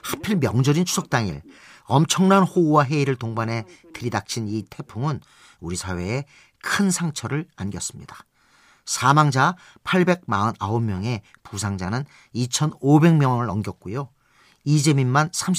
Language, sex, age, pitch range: Korean, male, 40-59, 110-155 Hz